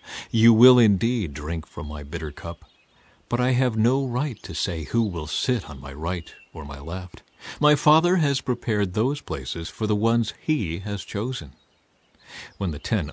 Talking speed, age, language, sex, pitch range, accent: 180 wpm, 50-69, English, male, 90-140 Hz, American